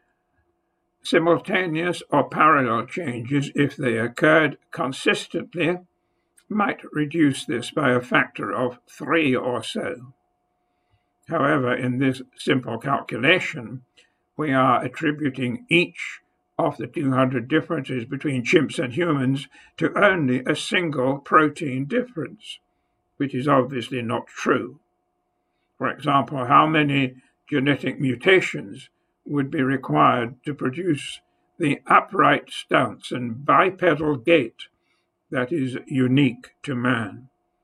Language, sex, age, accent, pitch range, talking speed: English, male, 60-79, American, 125-155 Hz, 110 wpm